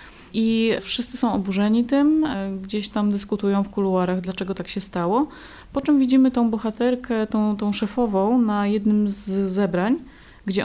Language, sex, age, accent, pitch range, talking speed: Polish, female, 30-49, native, 180-215 Hz, 150 wpm